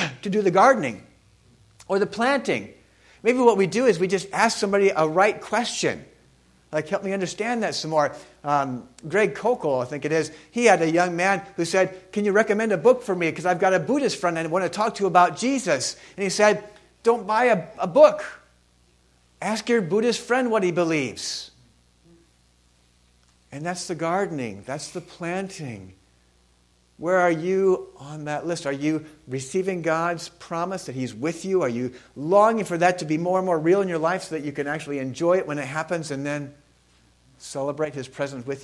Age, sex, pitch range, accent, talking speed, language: 50-69, male, 120-190 Hz, American, 195 wpm, English